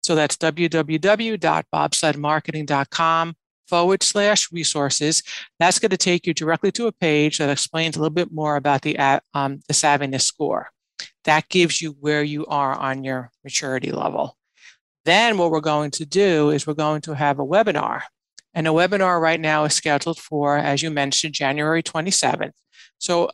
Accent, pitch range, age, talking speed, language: American, 150-180 Hz, 60-79, 160 wpm, English